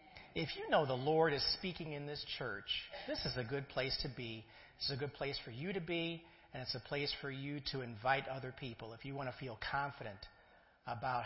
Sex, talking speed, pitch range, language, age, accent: male, 225 wpm, 120-150 Hz, English, 40-59, American